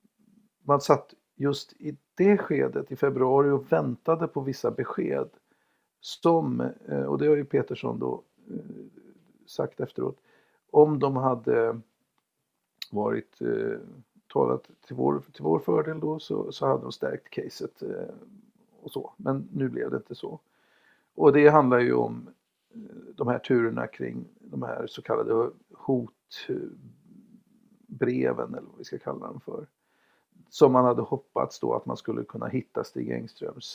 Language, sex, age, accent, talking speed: Swedish, male, 50-69, native, 140 wpm